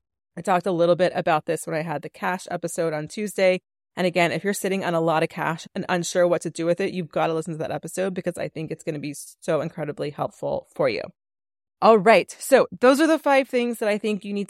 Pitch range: 165-200 Hz